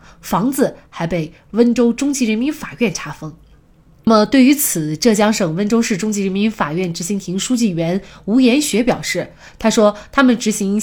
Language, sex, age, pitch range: Chinese, female, 20-39, 175-245 Hz